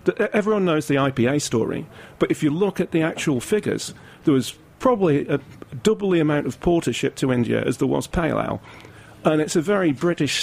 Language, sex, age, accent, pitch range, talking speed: English, male, 40-59, British, 125-155 Hz, 200 wpm